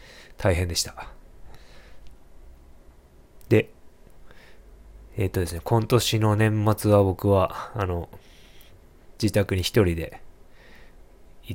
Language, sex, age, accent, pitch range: Japanese, male, 20-39, native, 85-105 Hz